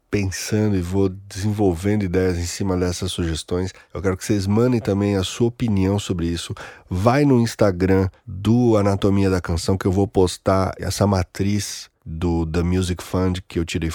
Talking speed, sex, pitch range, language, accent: 170 wpm, male, 95-120 Hz, Portuguese, Brazilian